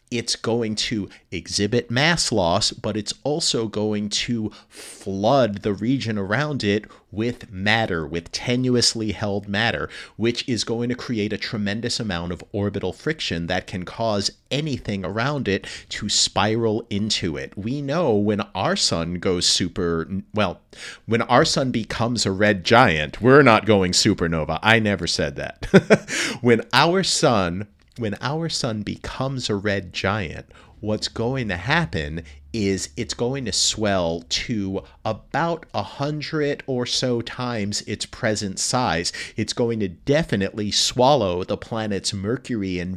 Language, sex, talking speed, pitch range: English, male, 145 wpm, 95-120 Hz